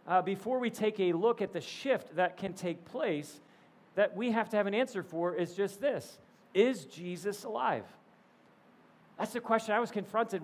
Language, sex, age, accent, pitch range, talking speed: English, male, 40-59, American, 185-225 Hz, 190 wpm